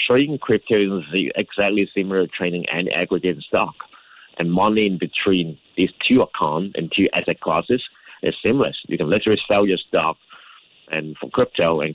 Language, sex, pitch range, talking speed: English, male, 80-100 Hz, 165 wpm